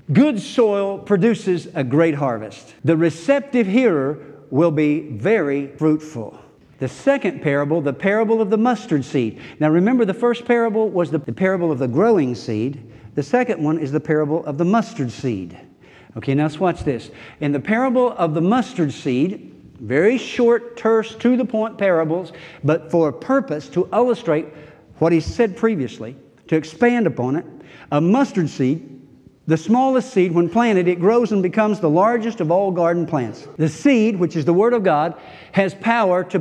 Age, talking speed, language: 60-79, 175 wpm, English